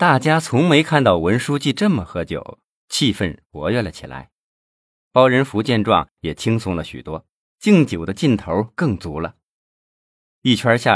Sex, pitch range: male, 90-145 Hz